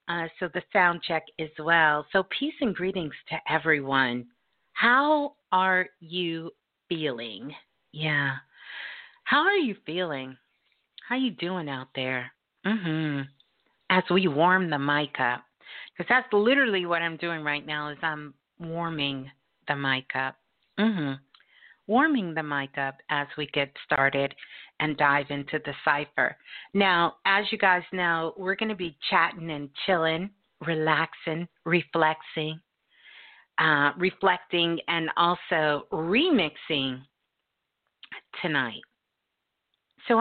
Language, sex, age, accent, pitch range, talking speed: English, female, 50-69, American, 145-190 Hz, 125 wpm